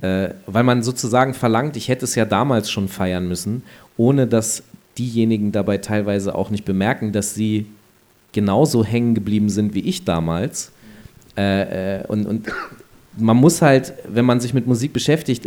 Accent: German